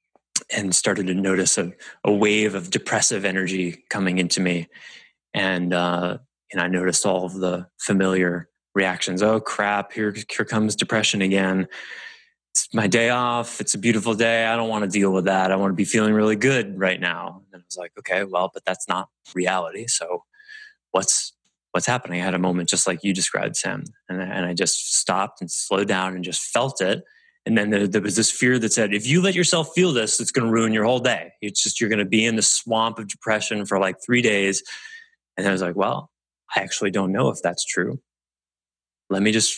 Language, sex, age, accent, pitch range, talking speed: English, male, 20-39, American, 90-115 Hz, 215 wpm